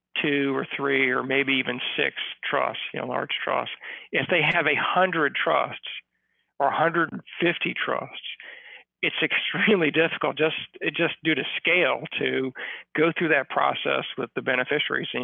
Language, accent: English, American